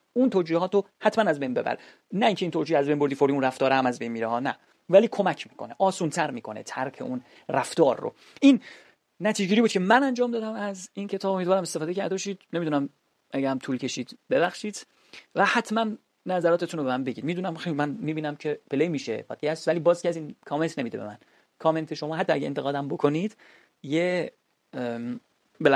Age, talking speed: 30-49, 200 wpm